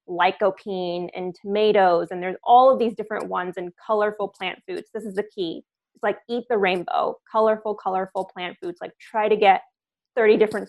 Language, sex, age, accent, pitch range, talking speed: English, female, 20-39, American, 185-220 Hz, 185 wpm